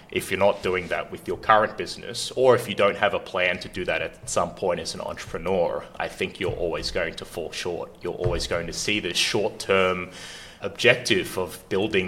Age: 20-39